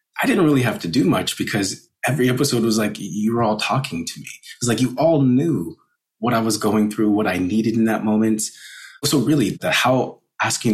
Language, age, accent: English, 30-49, American